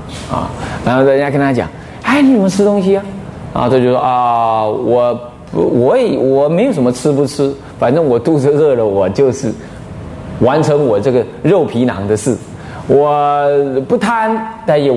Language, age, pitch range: Chinese, 30-49, 115-170 Hz